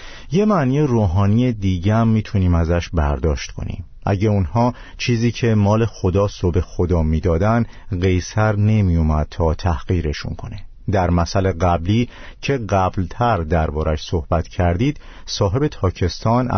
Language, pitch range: Persian, 85-115 Hz